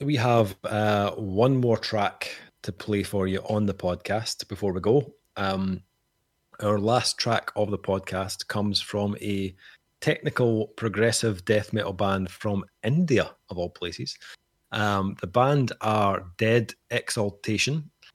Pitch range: 100-115 Hz